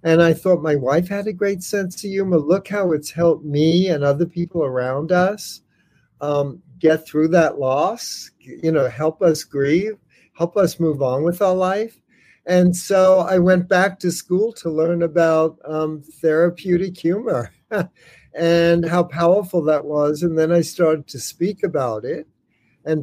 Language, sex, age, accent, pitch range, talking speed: English, male, 60-79, American, 155-180 Hz, 170 wpm